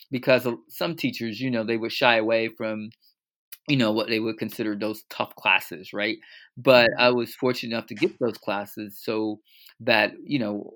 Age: 20-39